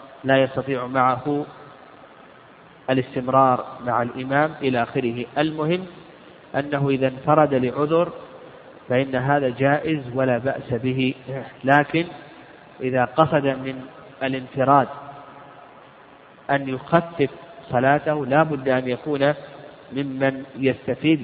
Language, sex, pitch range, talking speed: Arabic, male, 130-150 Hz, 95 wpm